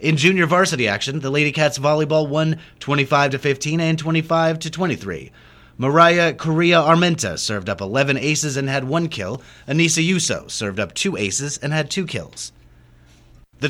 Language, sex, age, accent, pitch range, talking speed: English, male, 30-49, American, 125-160 Hz, 145 wpm